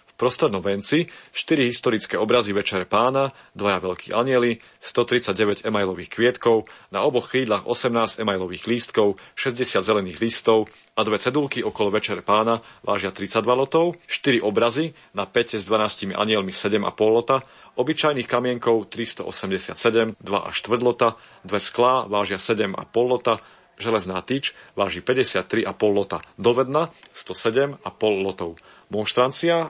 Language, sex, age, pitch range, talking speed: Slovak, male, 40-59, 100-120 Hz, 125 wpm